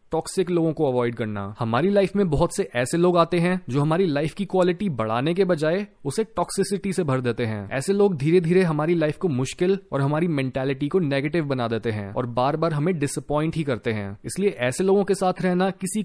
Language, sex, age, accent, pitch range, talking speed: Hindi, male, 30-49, native, 135-185 Hz, 220 wpm